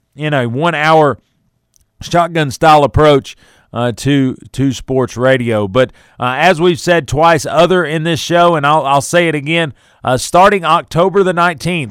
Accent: American